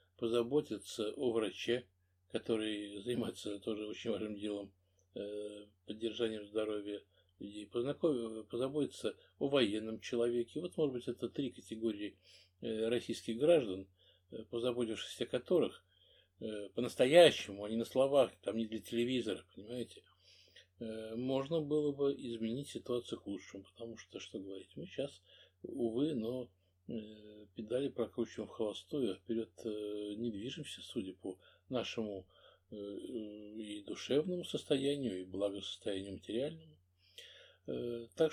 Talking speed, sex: 110 wpm, male